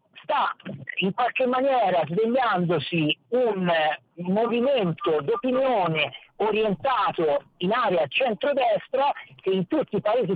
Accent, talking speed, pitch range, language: native, 100 wpm, 180-250 Hz, Italian